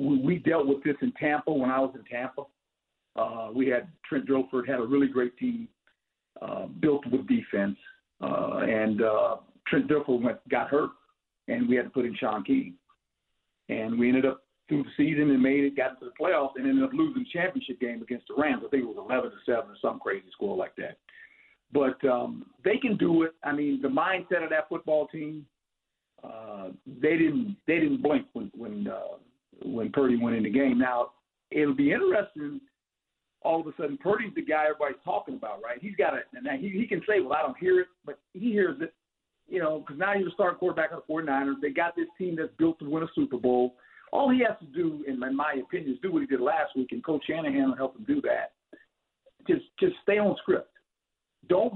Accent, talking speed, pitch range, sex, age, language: American, 225 wpm, 135-220 Hz, male, 50-69, English